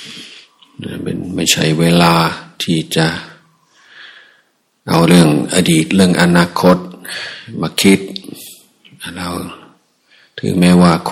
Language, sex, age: Thai, male, 60-79